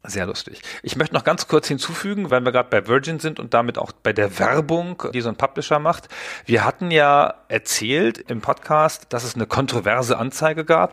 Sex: male